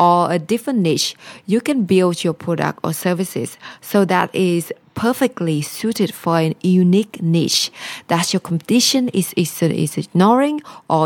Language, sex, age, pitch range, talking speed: English, female, 20-39, 170-220 Hz, 140 wpm